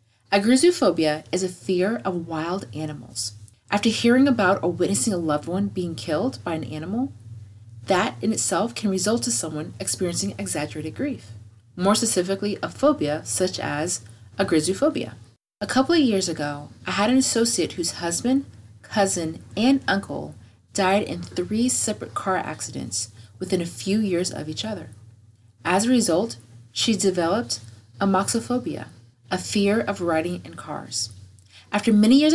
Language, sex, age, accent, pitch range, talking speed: English, female, 30-49, American, 125-205 Hz, 145 wpm